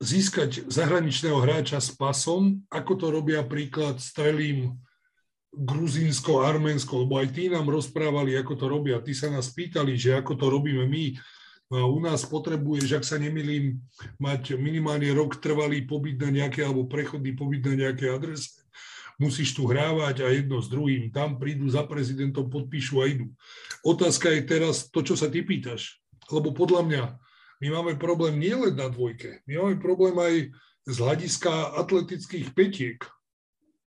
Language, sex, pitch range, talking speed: Slovak, male, 135-165 Hz, 155 wpm